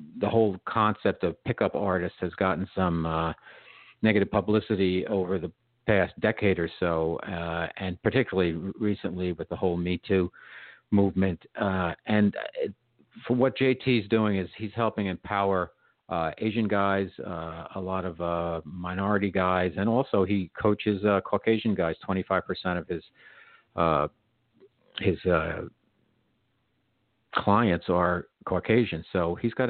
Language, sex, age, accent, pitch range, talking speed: English, male, 50-69, American, 90-105 Hz, 135 wpm